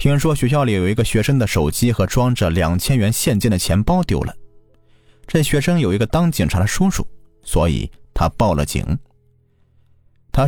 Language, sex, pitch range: Chinese, male, 95-130 Hz